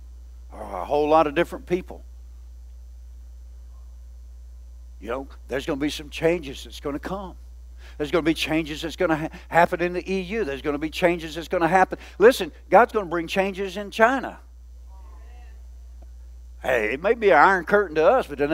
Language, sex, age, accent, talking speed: English, male, 60-79, American, 190 wpm